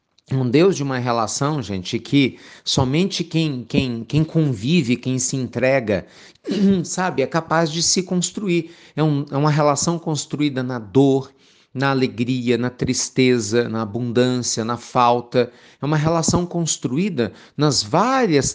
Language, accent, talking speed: Portuguese, Brazilian, 135 wpm